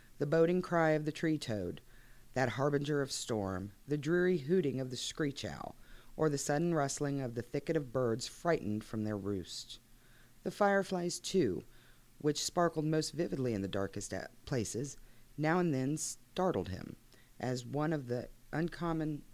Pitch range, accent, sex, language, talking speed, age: 120-150 Hz, American, female, English, 160 wpm, 40-59